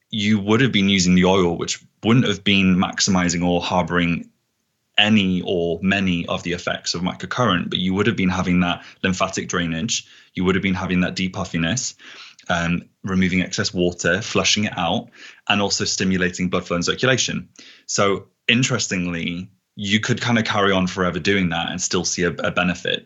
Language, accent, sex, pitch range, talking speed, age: English, British, male, 90-100 Hz, 180 wpm, 20-39